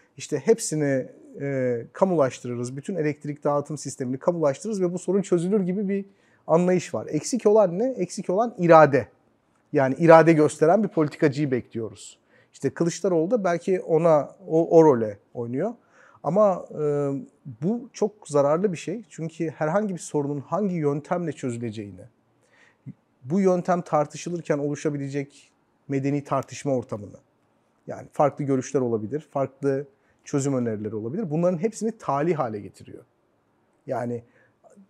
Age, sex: 40-59, male